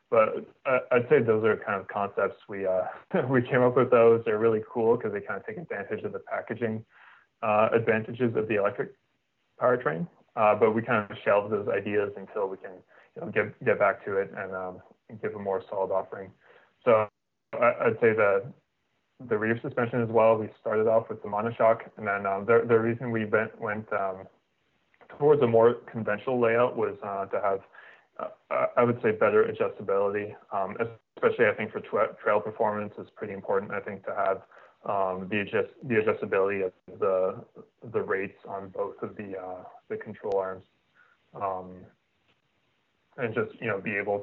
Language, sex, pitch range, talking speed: English, male, 100-125 Hz, 185 wpm